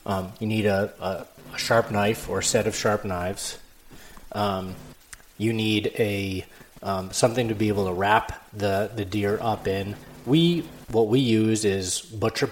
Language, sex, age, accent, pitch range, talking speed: English, male, 30-49, American, 100-115 Hz, 175 wpm